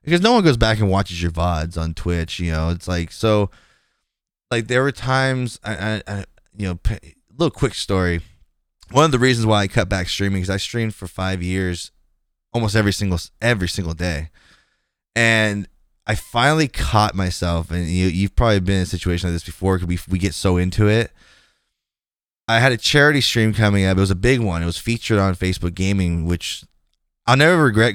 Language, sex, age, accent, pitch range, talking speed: English, male, 20-39, American, 85-110 Hz, 210 wpm